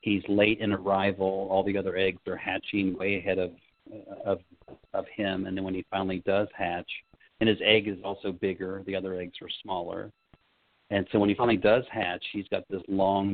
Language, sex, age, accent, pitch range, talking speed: English, male, 40-59, American, 95-105 Hz, 200 wpm